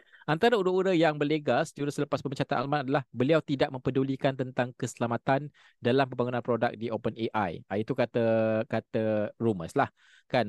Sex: male